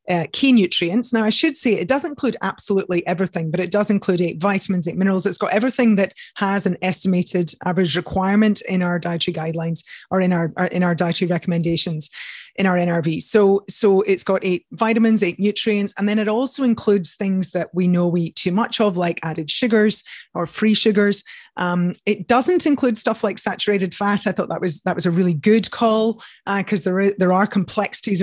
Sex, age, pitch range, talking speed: female, 30-49, 175-205 Hz, 205 wpm